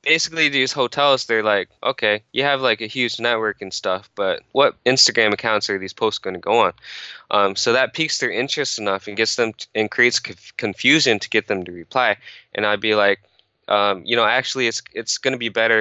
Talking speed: 215 wpm